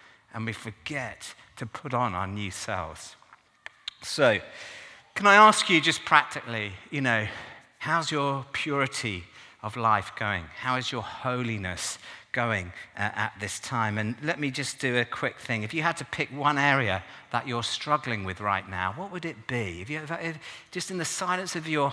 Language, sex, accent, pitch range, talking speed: English, male, British, 110-145 Hz, 175 wpm